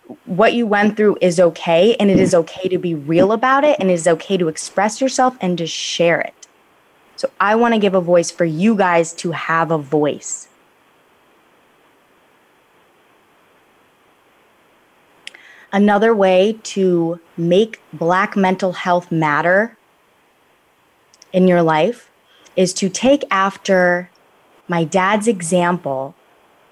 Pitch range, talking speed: 170-200 Hz, 130 wpm